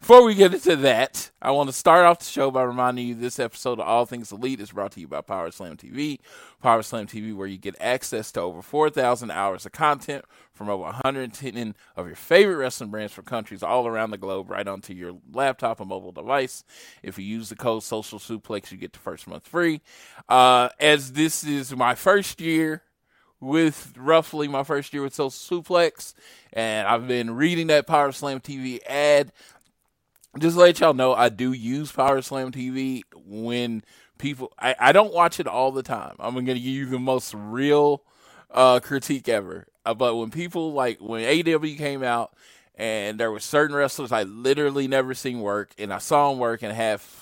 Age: 20-39